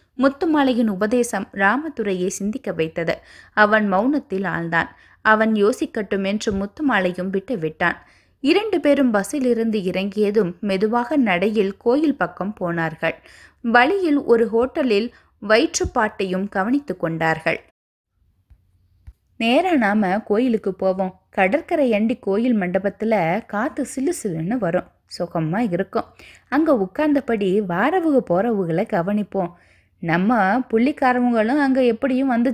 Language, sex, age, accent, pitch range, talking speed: Tamil, female, 20-39, native, 185-255 Hz, 100 wpm